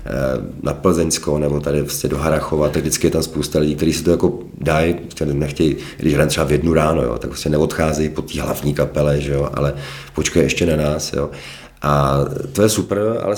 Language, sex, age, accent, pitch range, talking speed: Czech, male, 40-59, native, 75-90 Hz, 195 wpm